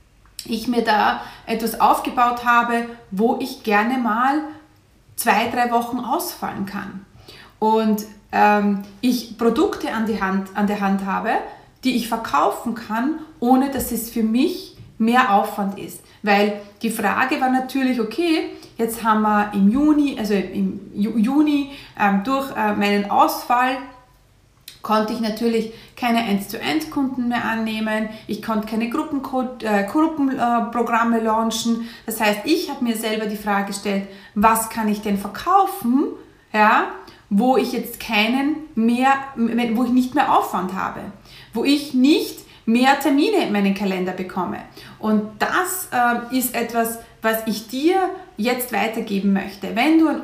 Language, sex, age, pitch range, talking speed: German, female, 30-49, 210-260 Hz, 145 wpm